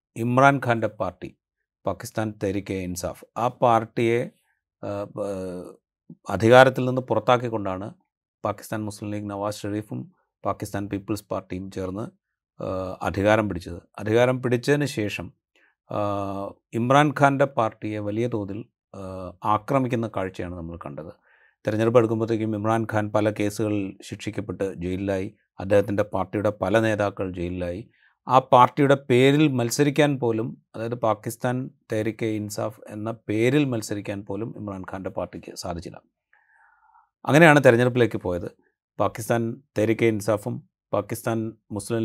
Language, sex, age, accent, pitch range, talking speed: Malayalam, male, 30-49, native, 100-125 Hz, 100 wpm